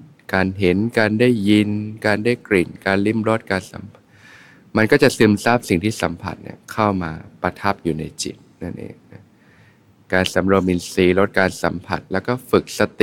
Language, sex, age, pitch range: Thai, male, 20-39, 90-110 Hz